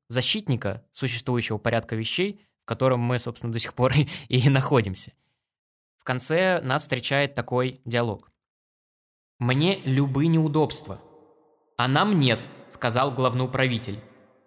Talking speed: 125 wpm